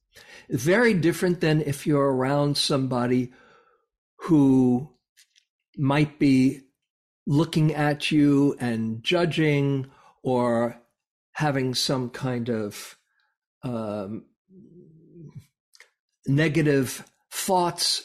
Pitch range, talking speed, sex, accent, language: 125-175 Hz, 75 wpm, male, American, English